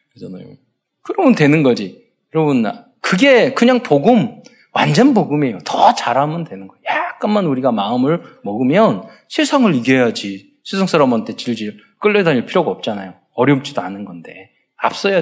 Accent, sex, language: native, male, Korean